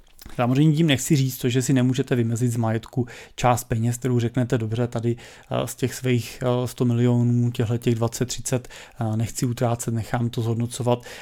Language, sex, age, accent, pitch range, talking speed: Czech, male, 30-49, native, 115-130 Hz, 160 wpm